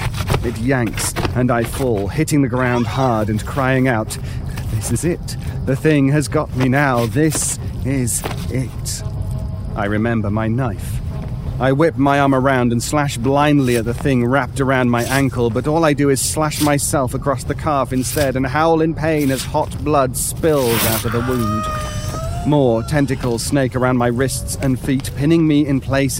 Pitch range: 115-135 Hz